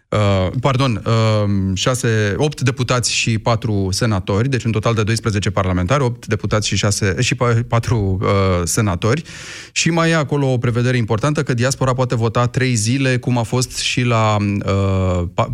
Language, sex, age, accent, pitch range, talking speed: Romanian, male, 30-49, native, 105-135 Hz, 160 wpm